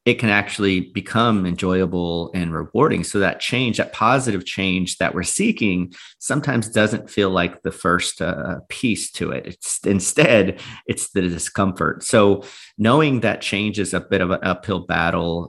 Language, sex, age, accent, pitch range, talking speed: English, male, 30-49, American, 90-100 Hz, 165 wpm